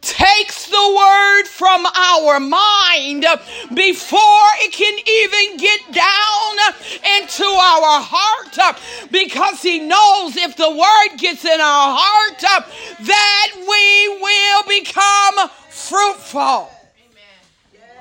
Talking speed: 100 wpm